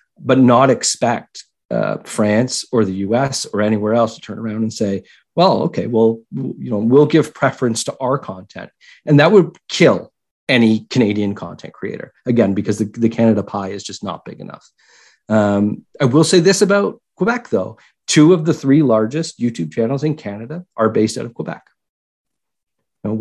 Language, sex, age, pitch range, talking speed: English, male, 40-59, 105-130 Hz, 180 wpm